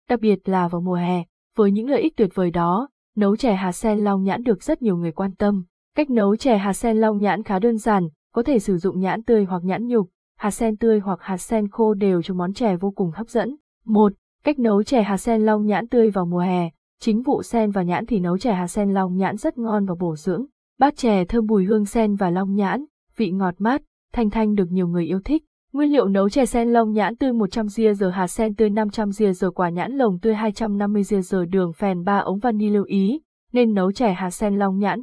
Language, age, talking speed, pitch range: Vietnamese, 20-39, 245 wpm, 190-230 Hz